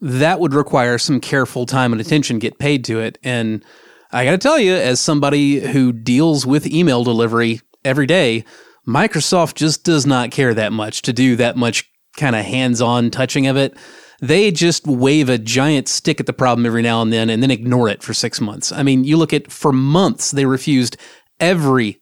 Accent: American